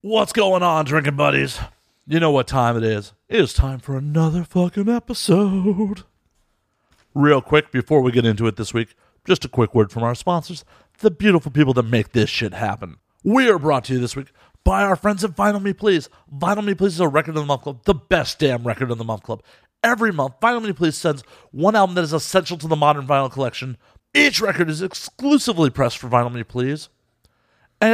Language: English